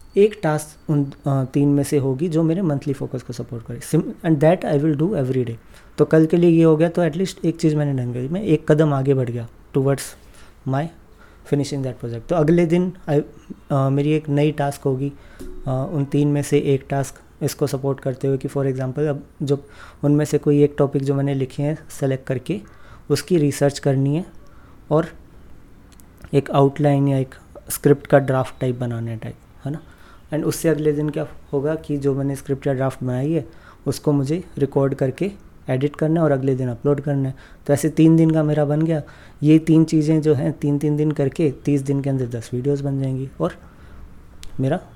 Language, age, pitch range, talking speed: Hindi, 20-39, 135-155 Hz, 200 wpm